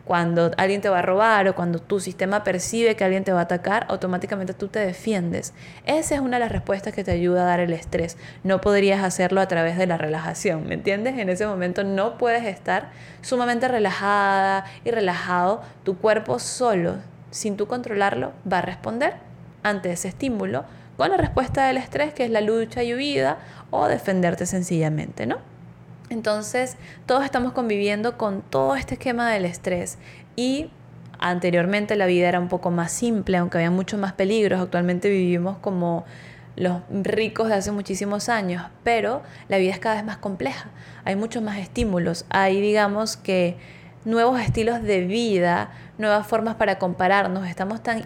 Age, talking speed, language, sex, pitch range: 20-39, 175 wpm, Spanish, female, 180-220 Hz